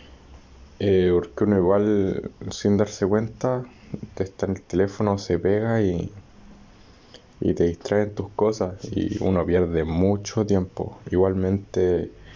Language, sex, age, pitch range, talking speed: Spanish, male, 20-39, 90-105 Hz, 125 wpm